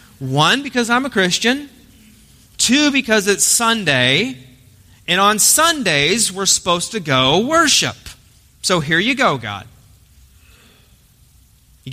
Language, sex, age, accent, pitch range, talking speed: English, male, 30-49, American, 125-185 Hz, 115 wpm